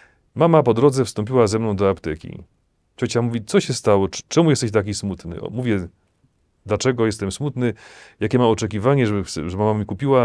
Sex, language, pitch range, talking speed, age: male, Polish, 100-130 Hz, 170 wpm, 40-59